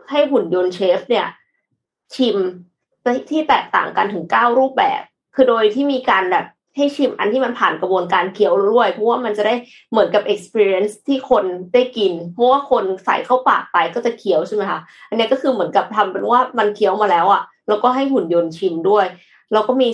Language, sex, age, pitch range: Thai, female, 20-39, 190-255 Hz